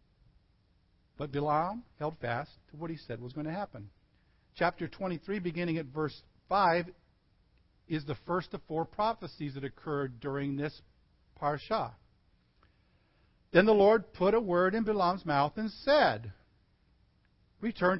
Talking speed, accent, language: 140 wpm, American, English